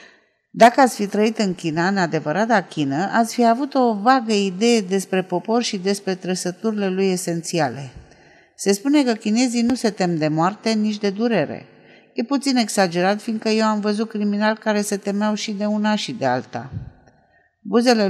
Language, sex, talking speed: Romanian, female, 170 wpm